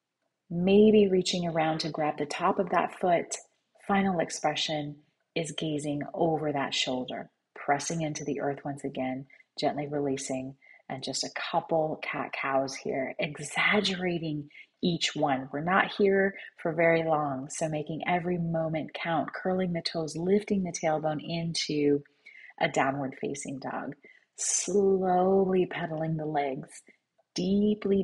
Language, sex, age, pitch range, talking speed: English, female, 30-49, 145-180 Hz, 135 wpm